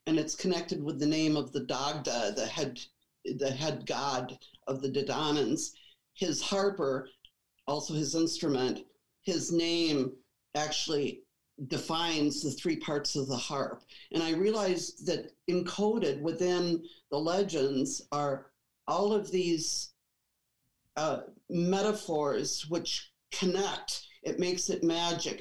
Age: 50-69